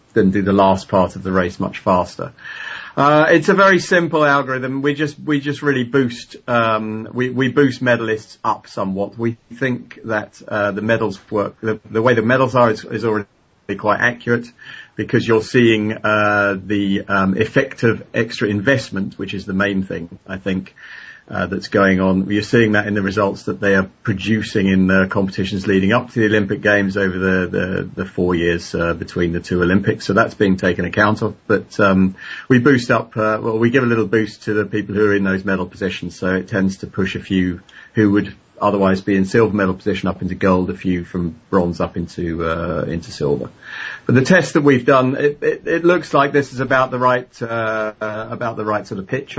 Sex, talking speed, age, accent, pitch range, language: male, 215 wpm, 40-59, British, 95-120 Hz, English